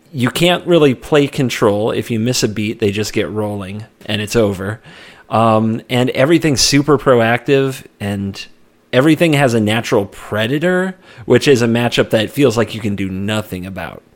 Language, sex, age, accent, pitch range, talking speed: English, male, 30-49, American, 105-140 Hz, 170 wpm